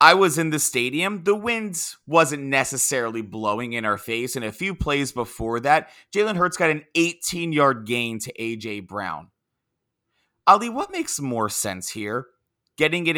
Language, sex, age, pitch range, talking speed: English, male, 30-49, 125-175 Hz, 165 wpm